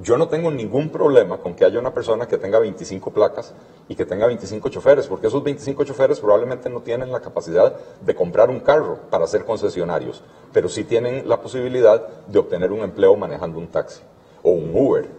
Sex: male